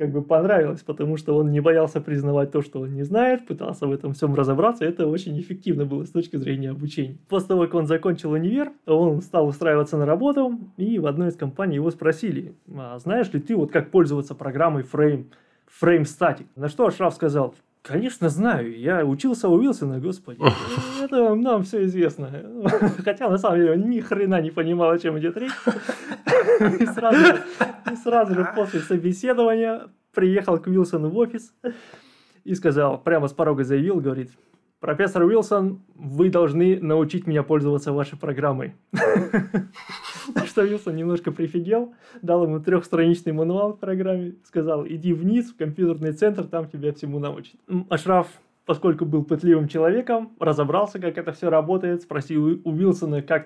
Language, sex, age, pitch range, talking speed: Russian, male, 20-39, 150-195 Hz, 165 wpm